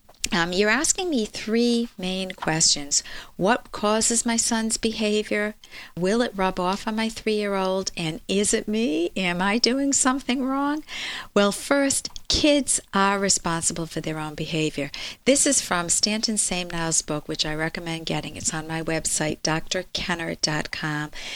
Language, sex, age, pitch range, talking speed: English, female, 50-69, 170-240 Hz, 145 wpm